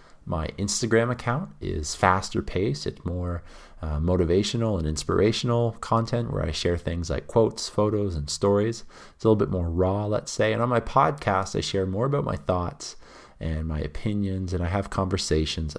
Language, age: English, 30-49